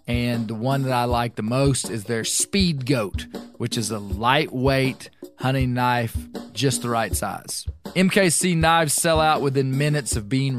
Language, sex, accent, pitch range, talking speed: English, male, American, 120-150 Hz, 170 wpm